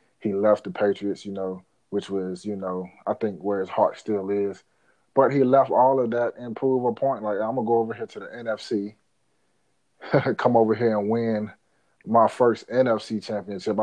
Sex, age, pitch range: male, 30-49, 105-130 Hz